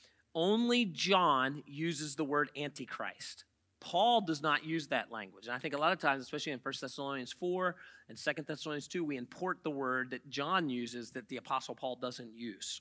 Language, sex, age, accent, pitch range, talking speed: English, male, 40-59, American, 150-220 Hz, 190 wpm